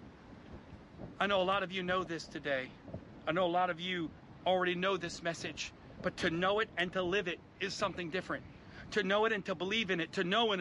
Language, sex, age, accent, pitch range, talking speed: English, male, 40-59, American, 190-275 Hz, 230 wpm